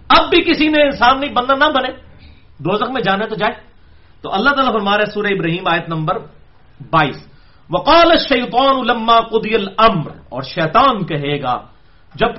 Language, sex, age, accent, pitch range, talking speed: English, male, 40-59, Indian, 170-270 Hz, 160 wpm